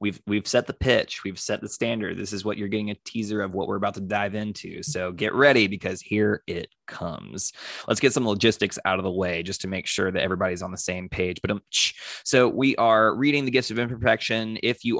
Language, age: English, 20-39